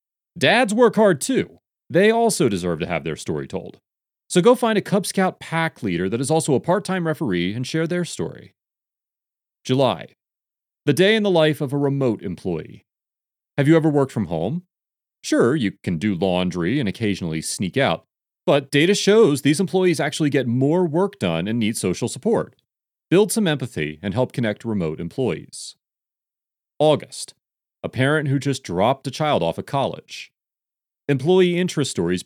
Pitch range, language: 105-165 Hz, English